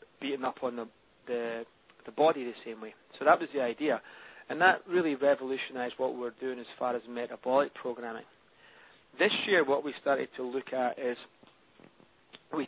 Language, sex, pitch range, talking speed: English, male, 125-145 Hz, 180 wpm